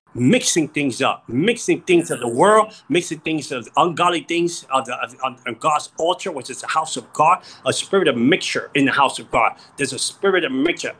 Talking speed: 215 wpm